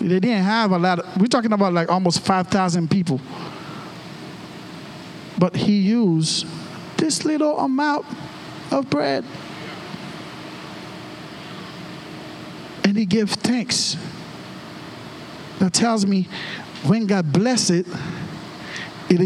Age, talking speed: 50-69, 105 wpm